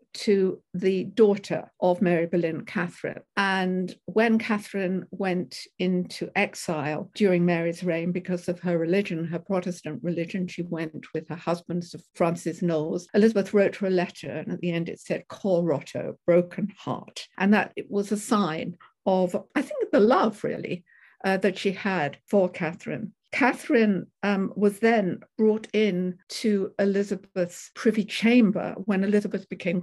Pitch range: 180-220 Hz